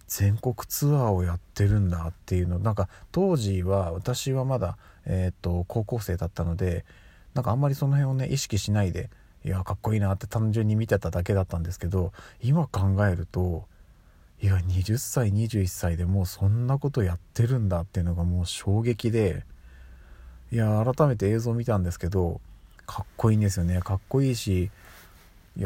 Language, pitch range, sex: Japanese, 90-115 Hz, male